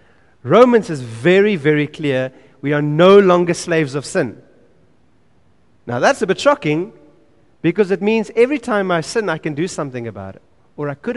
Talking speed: 175 wpm